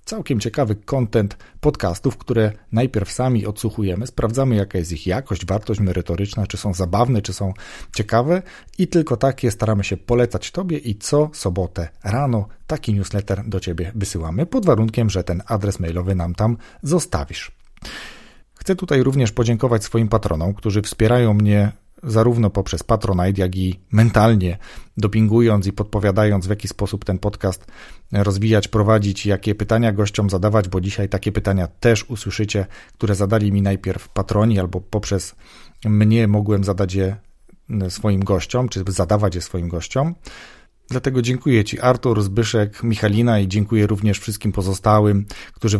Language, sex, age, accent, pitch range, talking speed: Polish, male, 40-59, native, 95-115 Hz, 145 wpm